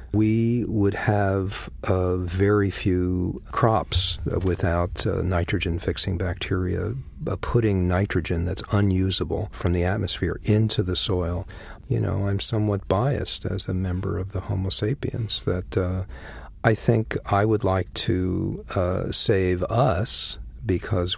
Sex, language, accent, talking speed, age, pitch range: male, English, American, 130 wpm, 50-69, 90-105 Hz